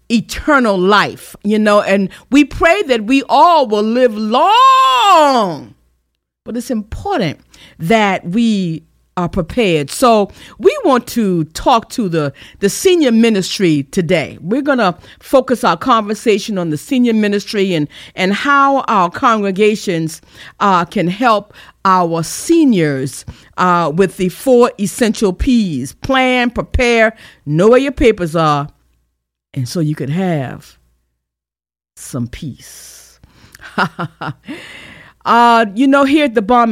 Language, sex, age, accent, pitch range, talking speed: English, female, 50-69, American, 165-235 Hz, 125 wpm